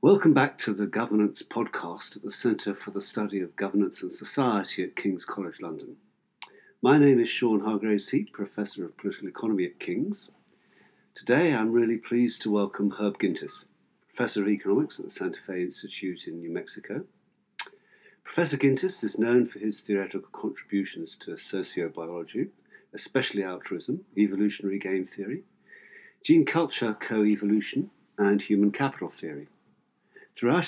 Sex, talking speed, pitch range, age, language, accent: male, 145 wpm, 95-115 Hz, 50-69, English, British